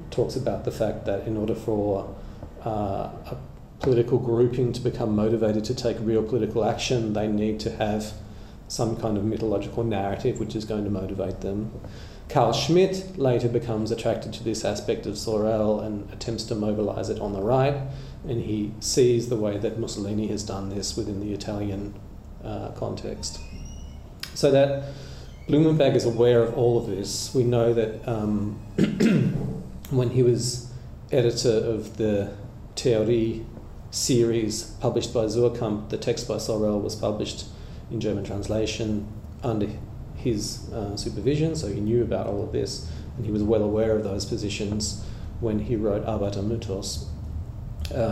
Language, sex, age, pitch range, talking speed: English, male, 40-59, 105-120 Hz, 155 wpm